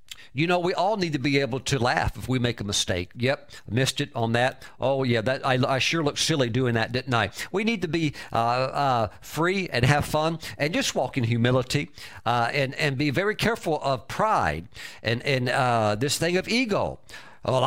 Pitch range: 125-170 Hz